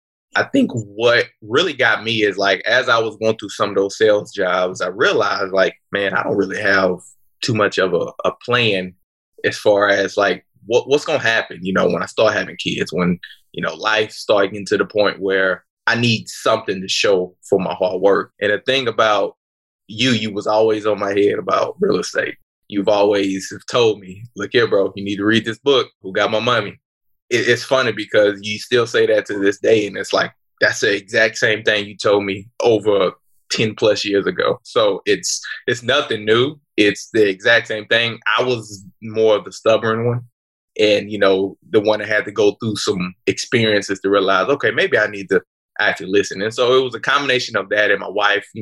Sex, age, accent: male, 20-39, American